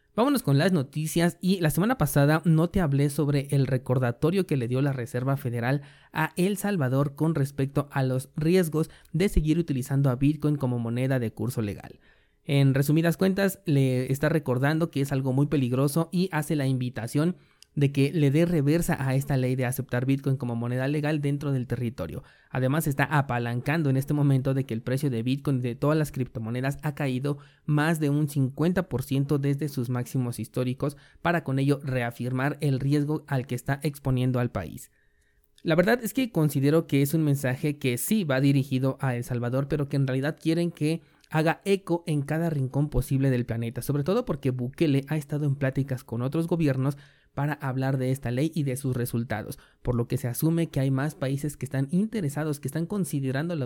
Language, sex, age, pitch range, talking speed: Spanish, male, 30-49, 130-155 Hz, 195 wpm